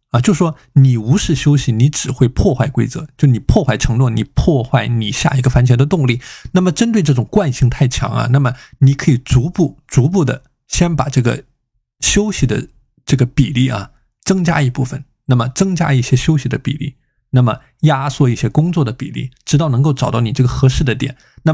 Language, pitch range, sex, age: Chinese, 125-150 Hz, male, 20-39